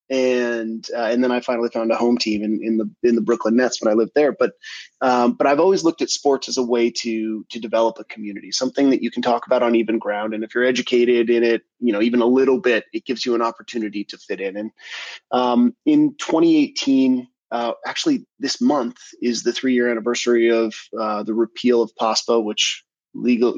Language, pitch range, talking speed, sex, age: English, 115-140 Hz, 220 wpm, male, 30-49